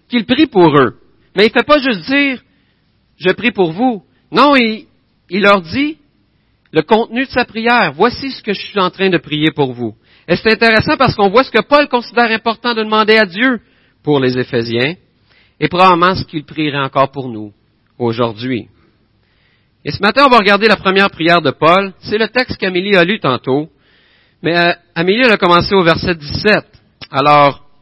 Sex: male